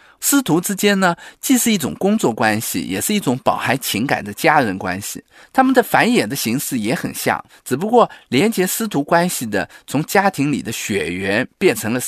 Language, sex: Chinese, male